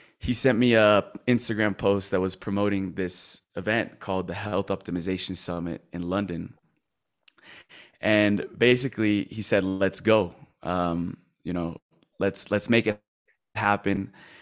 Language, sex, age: English, male, 20-39